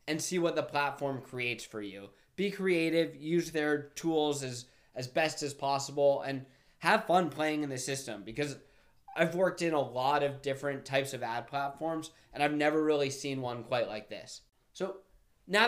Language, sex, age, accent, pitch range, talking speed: English, male, 20-39, American, 130-155 Hz, 185 wpm